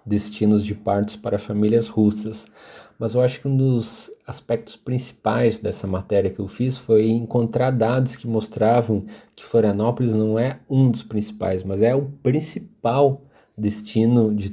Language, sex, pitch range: Portuguese, male, 105-120 Hz